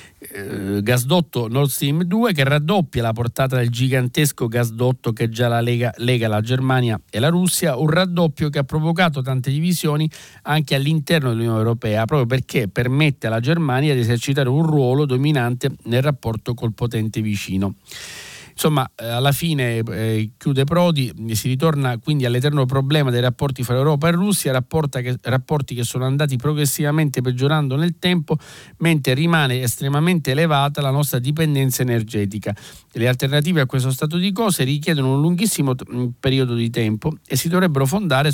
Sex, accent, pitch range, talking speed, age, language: male, native, 125-155 Hz, 160 wpm, 50-69, Italian